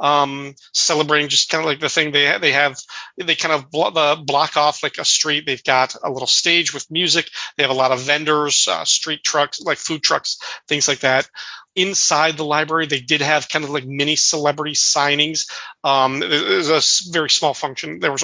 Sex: male